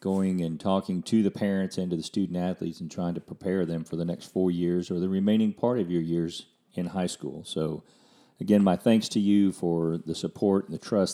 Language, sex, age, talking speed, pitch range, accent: English, male, 40-59, 225 wpm, 85-95 Hz, American